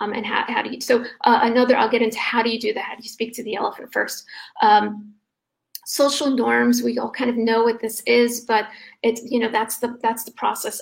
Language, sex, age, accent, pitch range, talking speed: English, female, 40-59, American, 225-265 Hz, 240 wpm